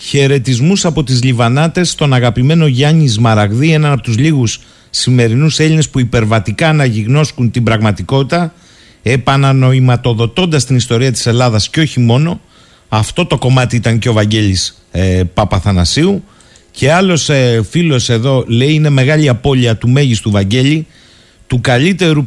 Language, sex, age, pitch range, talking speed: Greek, male, 50-69, 110-150 Hz, 135 wpm